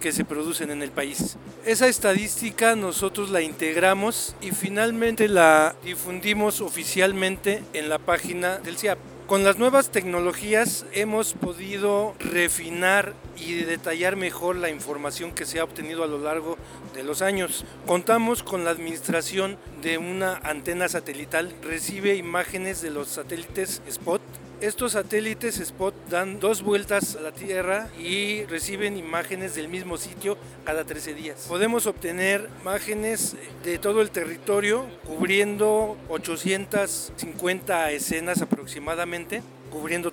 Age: 50-69